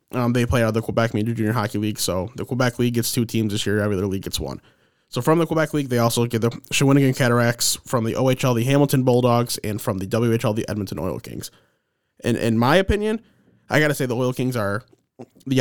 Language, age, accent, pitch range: English, 20-39, American, 110-130 Hz